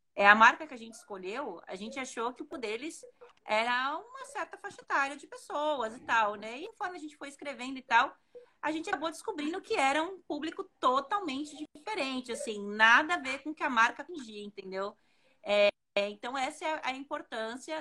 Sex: female